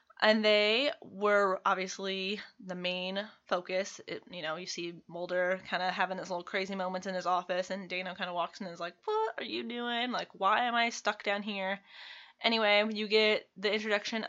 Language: English